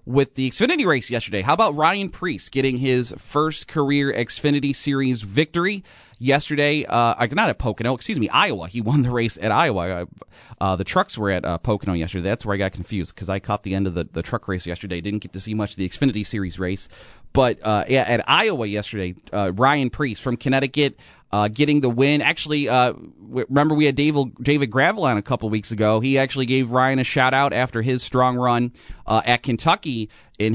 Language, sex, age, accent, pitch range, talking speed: English, male, 30-49, American, 110-135 Hz, 210 wpm